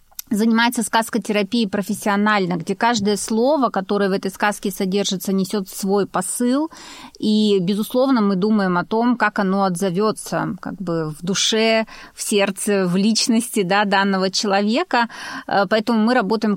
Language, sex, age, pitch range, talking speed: Russian, female, 30-49, 190-220 Hz, 140 wpm